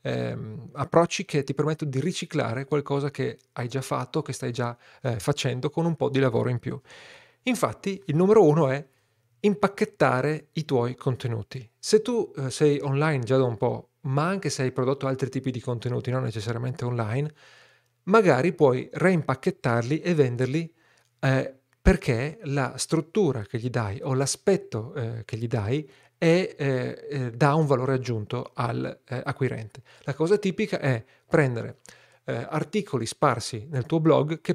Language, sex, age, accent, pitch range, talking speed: Italian, male, 40-59, native, 125-160 Hz, 160 wpm